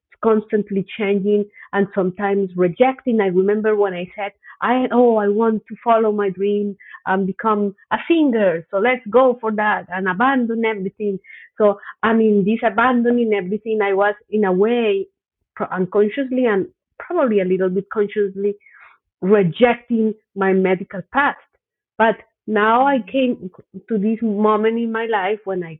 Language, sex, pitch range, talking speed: English, female, 195-235 Hz, 150 wpm